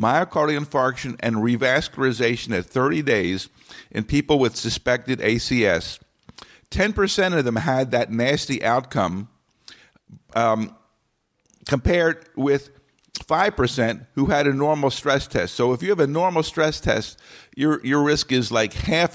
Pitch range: 110-145 Hz